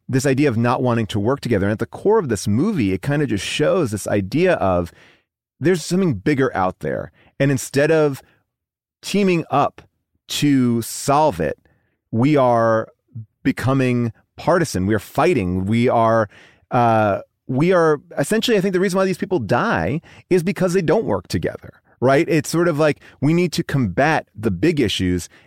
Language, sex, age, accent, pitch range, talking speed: English, male, 30-49, American, 115-155 Hz, 175 wpm